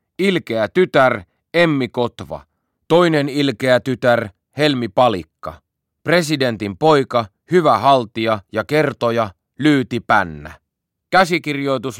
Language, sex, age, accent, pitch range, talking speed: Finnish, male, 30-49, native, 95-135 Hz, 90 wpm